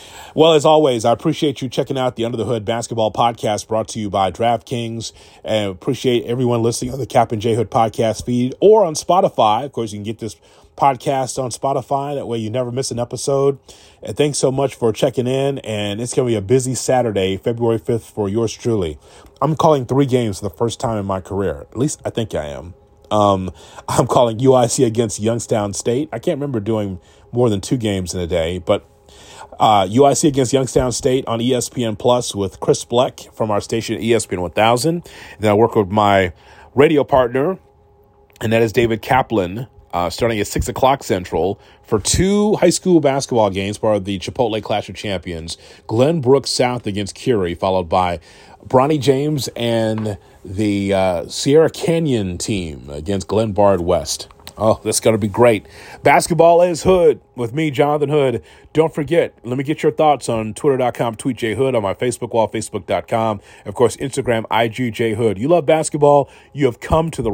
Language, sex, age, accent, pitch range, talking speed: English, male, 30-49, American, 105-135 Hz, 190 wpm